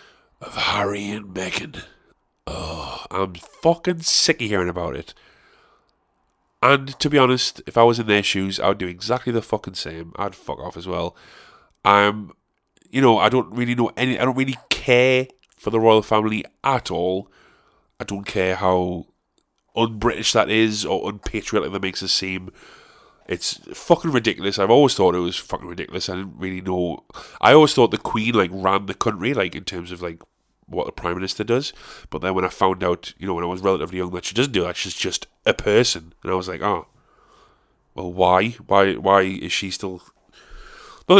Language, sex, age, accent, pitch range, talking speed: English, male, 30-49, British, 95-120 Hz, 195 wpm